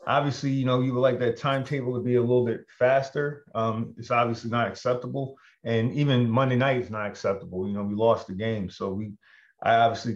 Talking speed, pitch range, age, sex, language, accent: 215 wpm, 110-125 Hz, 30-49, male, English, American